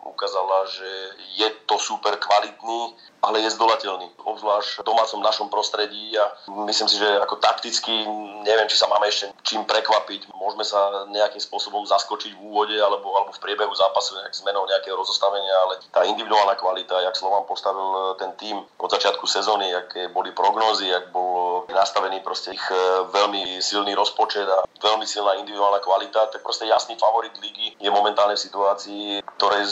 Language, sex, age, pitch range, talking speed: Slovak, male, 30-49, 95-105 Hz, 160 wpm